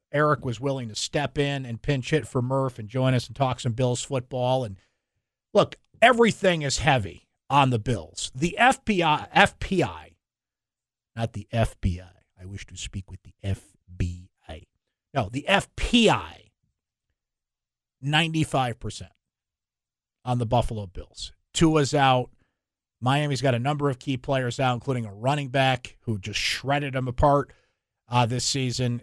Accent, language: American, English